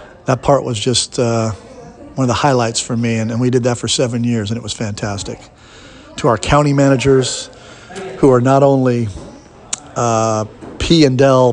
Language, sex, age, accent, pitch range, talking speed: English, male, 50-69, American, 115-135 Hz, 170 wpm